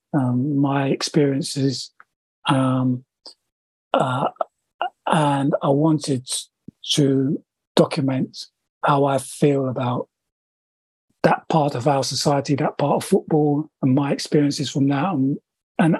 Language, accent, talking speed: English, British, 115 wpm